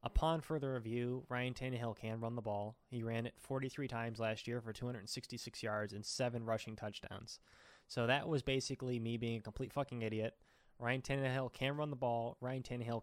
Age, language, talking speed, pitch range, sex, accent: 20-39, English, 190 wpm, 110-135 Hz, male, American